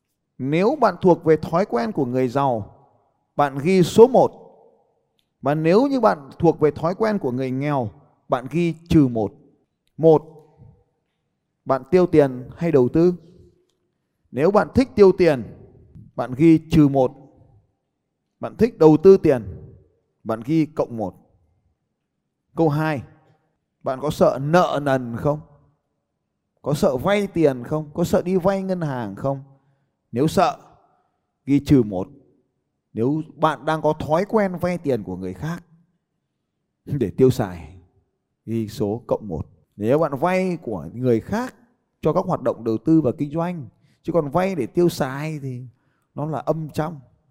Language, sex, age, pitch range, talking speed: Vietnamese, male, 20-39, 130-170 Hz, 155 wpm